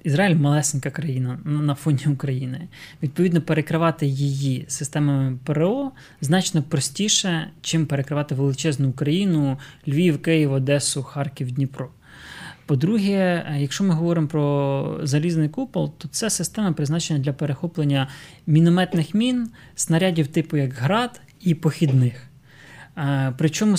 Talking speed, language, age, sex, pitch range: 115 wpm, Ukrainian, 20-39, male, 145-170 Hz